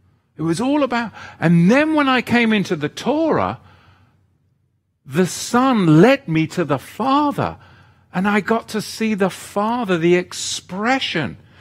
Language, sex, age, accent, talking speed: English, male, 50-69, British, 145 wpm